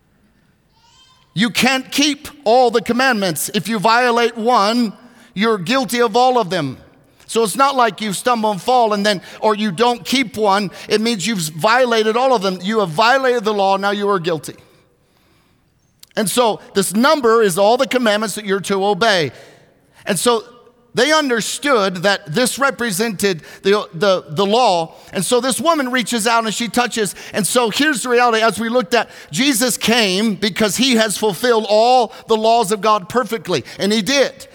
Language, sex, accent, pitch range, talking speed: English, male, American, 205-245 Hz, 180 wpm